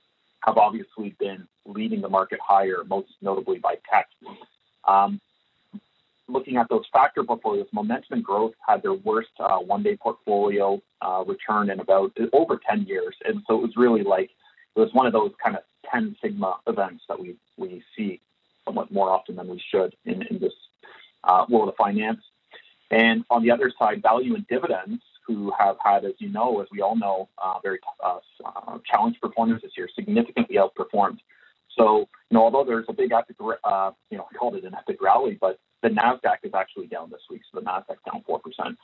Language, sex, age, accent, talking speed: English, male, 30-49, American, 190 wpm